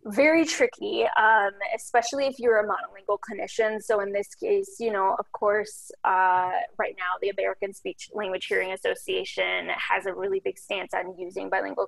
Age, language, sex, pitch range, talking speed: 20-39, English, female, 195-260 Hz, 170 wpm